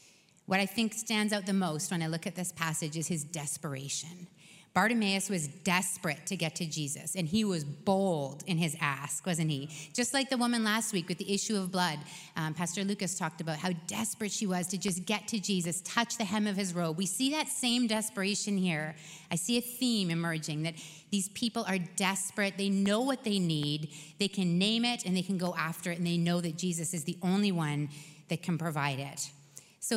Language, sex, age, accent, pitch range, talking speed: English, female, 30-49, American, 165-210 Hz, 215 wpm